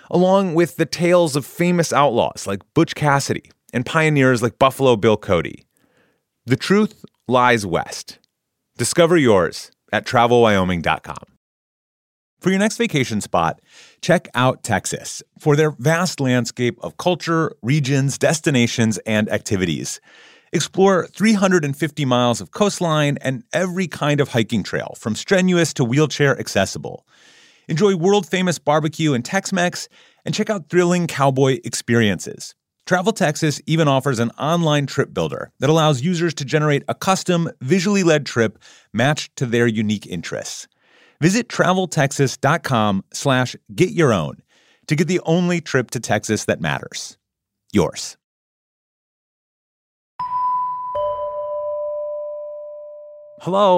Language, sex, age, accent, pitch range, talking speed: English, male, 30-49, American, 125-180 Hz, 115 wpm